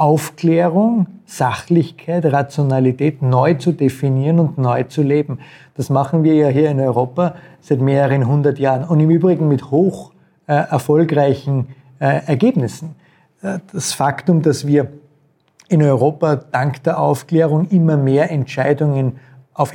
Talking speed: 125 wpm